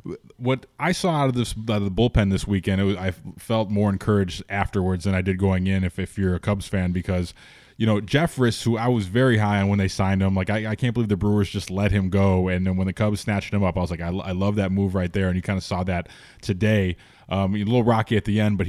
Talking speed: 285 wpm